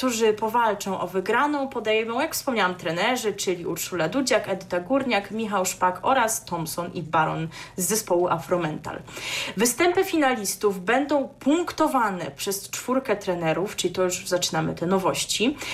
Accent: native